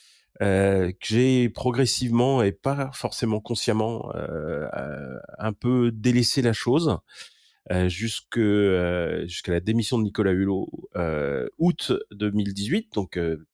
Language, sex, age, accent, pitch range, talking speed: French, male, 40-59, French, 90-120 Hz, 125 wpm